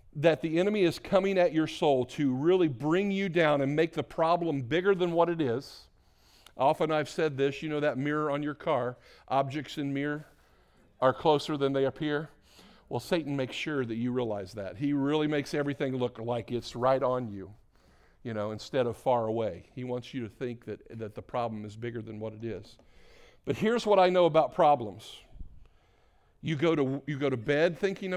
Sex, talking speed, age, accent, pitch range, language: male, 200 wpm, 50-69, American, 130-180 Hz, English